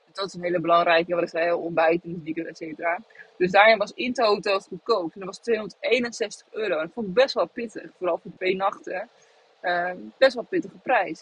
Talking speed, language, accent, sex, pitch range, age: 230 wpm, Dutch, Dutch, female, 190-245 Hz, 20-39